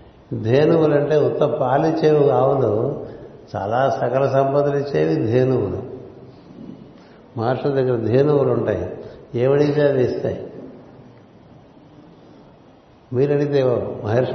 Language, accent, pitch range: Telugu, native, 120-140 Hz